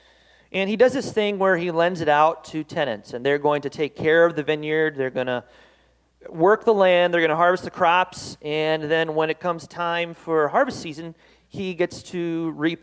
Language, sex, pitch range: English, male, 135-190 Hz